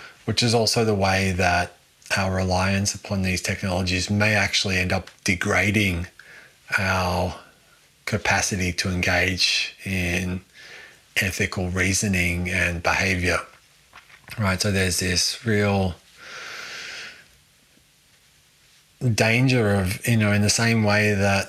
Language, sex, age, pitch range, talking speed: English, male, 20-39, 90-105 Hz, 110 wpm